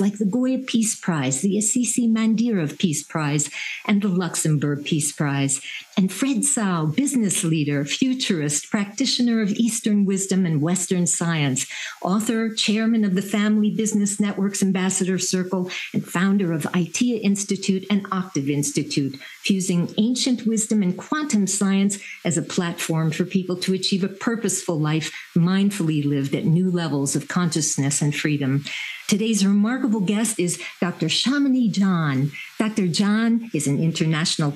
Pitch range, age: 170-220 Hz, 50-69